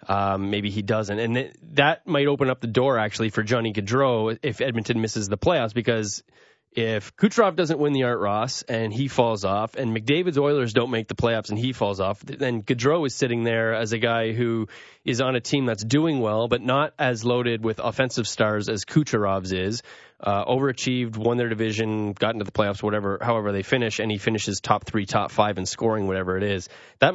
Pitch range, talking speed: 110-130 Hz, 210 wpm